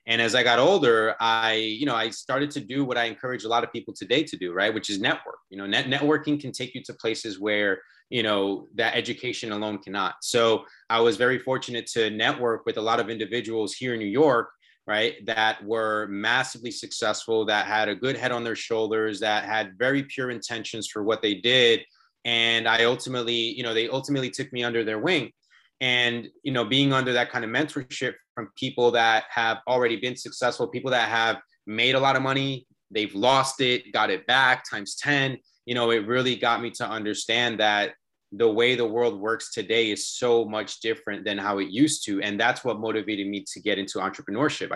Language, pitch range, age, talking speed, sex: English, 105-125 Hz, 20-39, 210 wpm, male